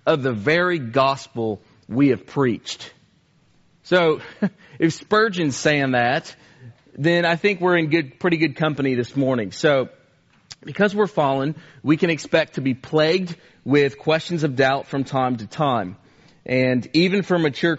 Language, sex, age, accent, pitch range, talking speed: English, male, 40-59, American, 130-160 Hz, 150 wpm